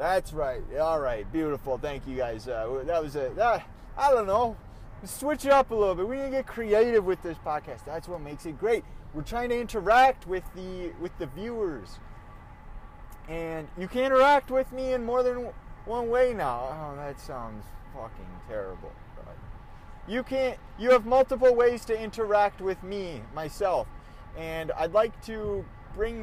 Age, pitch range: 20-39, 155-220 Hz